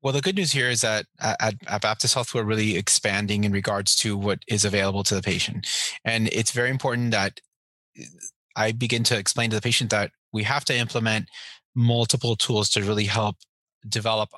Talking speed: 190 wpm